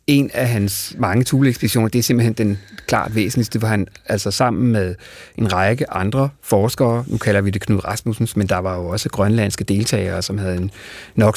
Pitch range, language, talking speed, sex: 100-130 Hz, Danish, 195 wpm, male